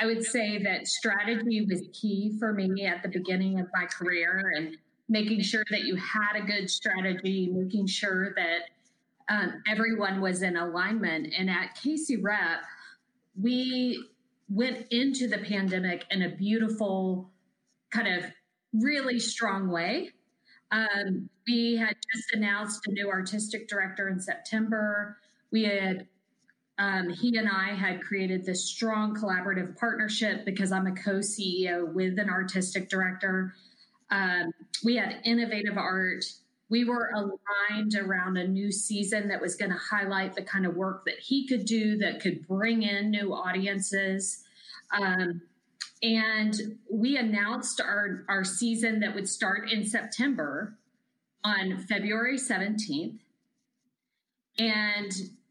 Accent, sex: American, female